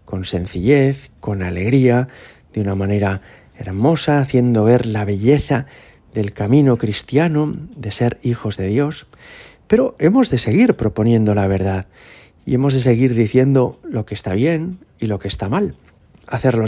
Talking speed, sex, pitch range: 150 wpm, male, 105-135 Hz